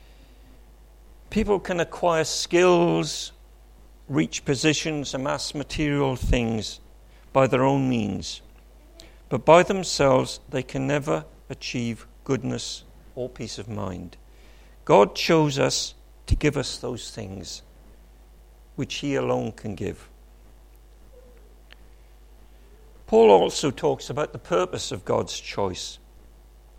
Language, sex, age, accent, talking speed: English, male, 50-69, British, 105 wpm